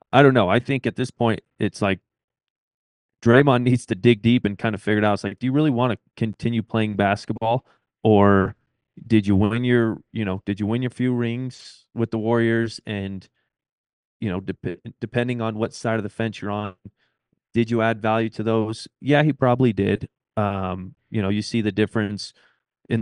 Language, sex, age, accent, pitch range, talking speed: English, male, 30-49, American, 105-120 Hz, 200 wpm